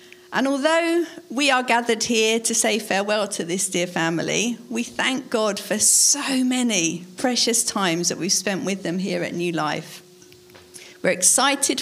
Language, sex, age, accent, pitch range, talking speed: English, female, 50-69, British, 180-245 Hz, 160 wpm